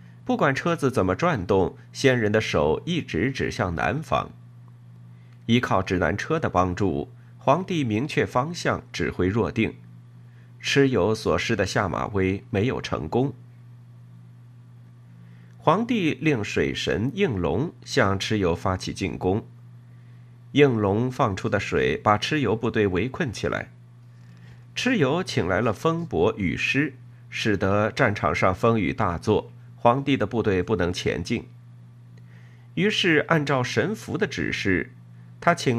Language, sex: Chinese, male